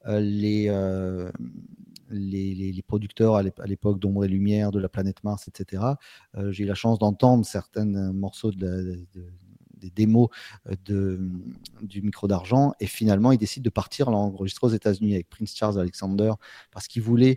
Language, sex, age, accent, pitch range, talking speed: French, male, 40-59, French, 100-125 Hz, 175 wpm